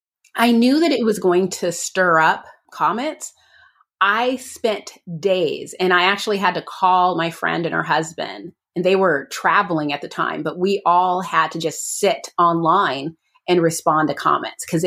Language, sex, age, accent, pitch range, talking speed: English, female, 30-49, American, 165-215 Hz, 180 wpm